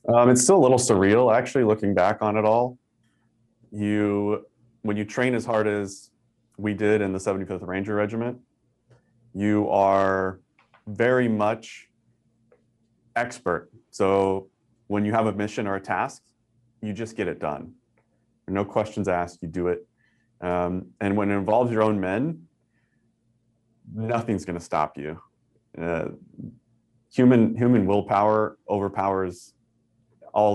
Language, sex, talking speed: English, male, 140 wpm